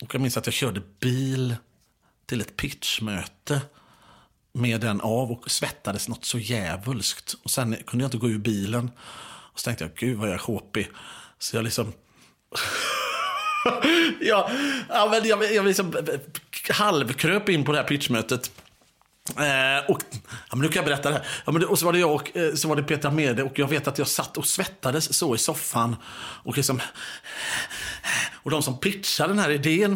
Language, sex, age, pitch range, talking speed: English, male, 30-49, 125-160 Hz, 190 wpm